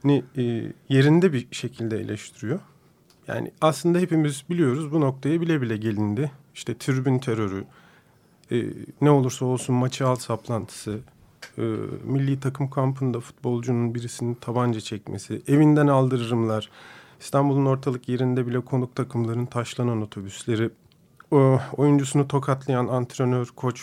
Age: 40-59